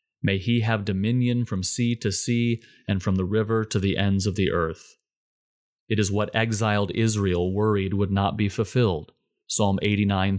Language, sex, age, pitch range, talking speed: English, male, 30-49, 95-115 Hz, 175 wpm